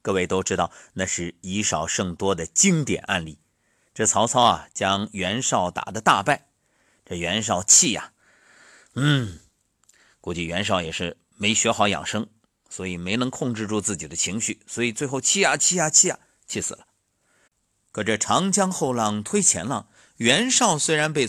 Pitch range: 100-155 Hz